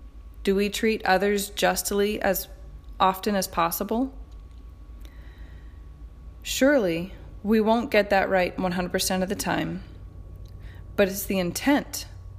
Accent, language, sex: American, English, female